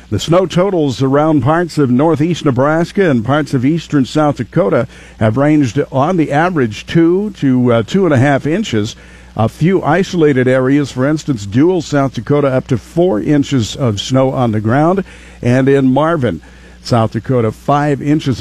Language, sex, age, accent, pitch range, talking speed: English, male, 50-69, American, 120-155 Hz, 170 wpm